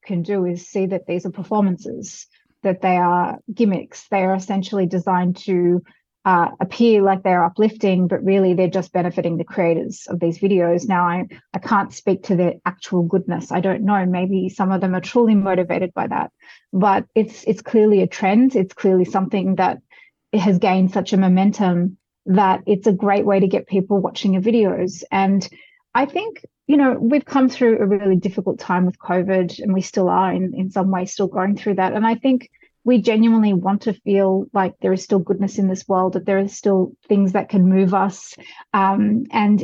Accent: Australian